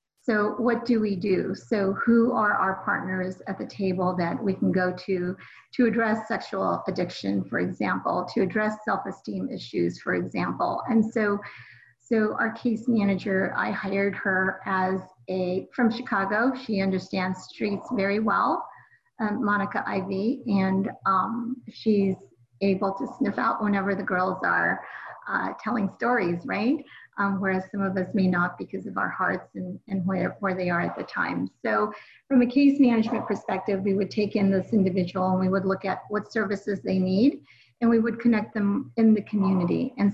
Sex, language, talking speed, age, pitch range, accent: female, English, 175 wpm, 40-59, 190-220 Hz, American